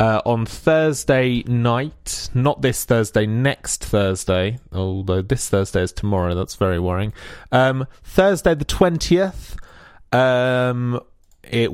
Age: 30-49